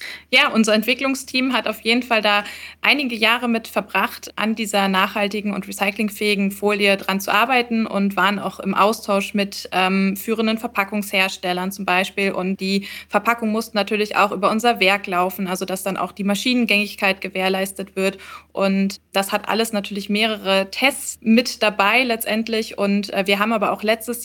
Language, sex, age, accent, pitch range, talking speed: German, female, 20-39, German, 190-220 Hz, 165 wpm